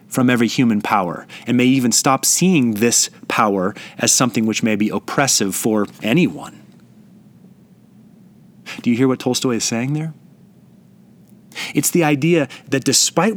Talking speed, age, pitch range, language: 145 wpm, 30-49, 125-175 Hz, English